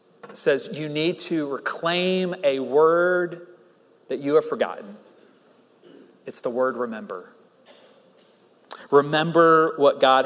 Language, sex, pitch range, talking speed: English, male, 135-175 Hz, 110 wpm